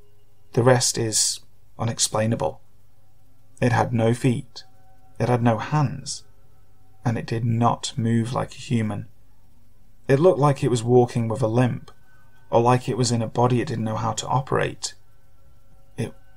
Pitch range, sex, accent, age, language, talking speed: 110-125 Hz, male, British, 30-49, English, 160 wpm